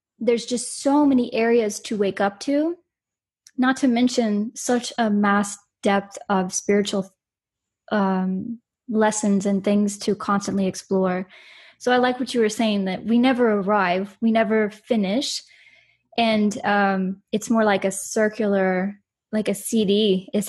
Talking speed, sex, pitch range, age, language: 145 wpm, female, 200-245 Hz, 20-39, English